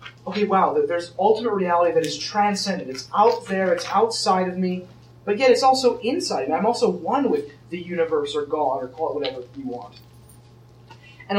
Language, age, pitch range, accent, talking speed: English, 20-39, 125-210 Hz, American, 190 wpm